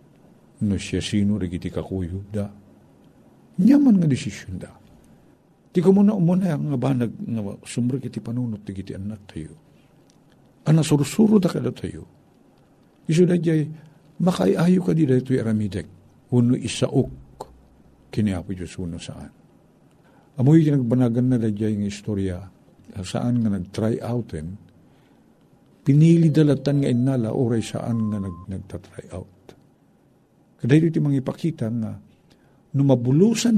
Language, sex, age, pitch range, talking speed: Filipino, male, 60-79, 100-160 Hz, 130 wpm